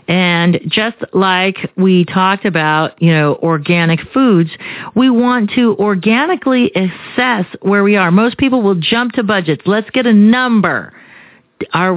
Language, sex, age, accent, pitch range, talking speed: English, female, 40-59, American, 165-230 Hz, 145 wpm